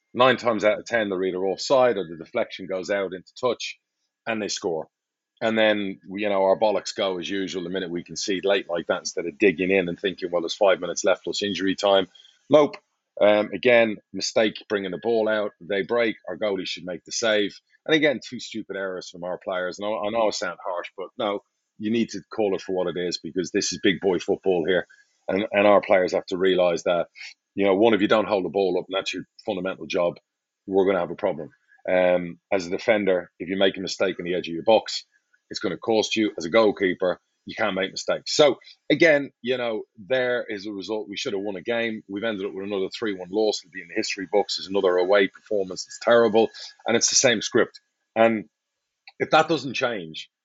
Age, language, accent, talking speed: 40-59, English, British, 230 wpm